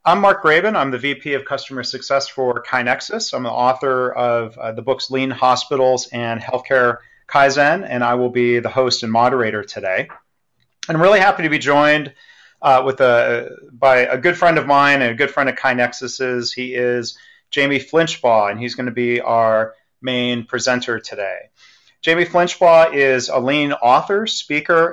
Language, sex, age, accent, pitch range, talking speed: English, male, 30-49, American, 125-150 Hz, 175 wpm